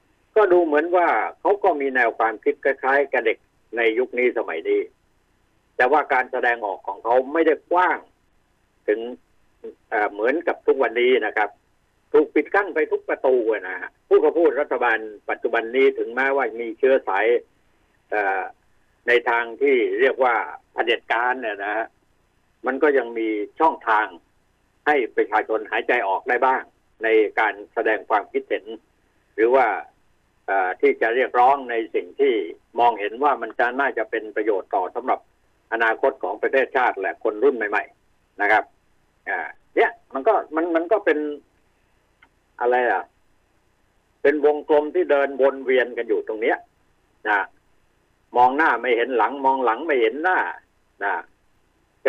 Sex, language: male, Thai